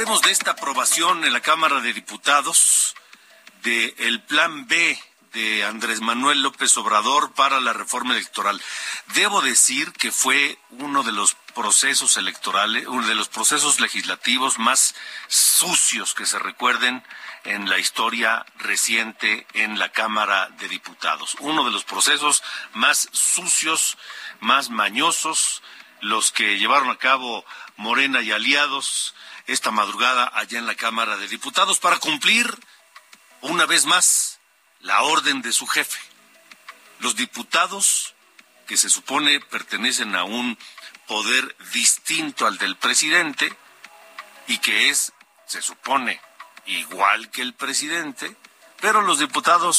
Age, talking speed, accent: 50-69, 130 wpm, Mexican